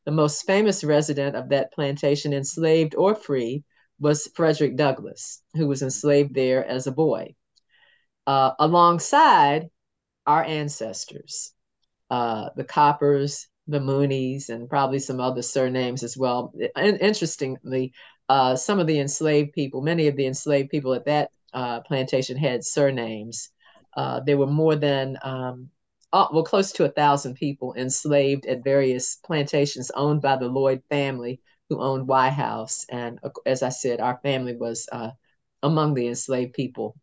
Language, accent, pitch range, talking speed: English, American, 130-165 Hz, 150 wpm